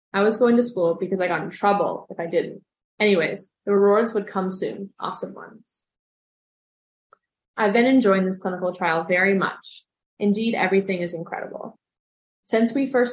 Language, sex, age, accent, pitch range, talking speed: English, female, 20-39, American, 185-220 Hz, 165 wpm